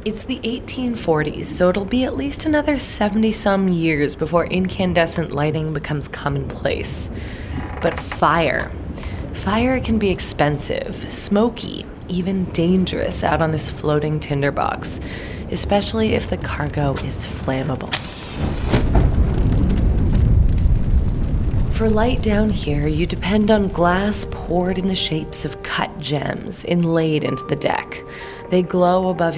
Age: 20-39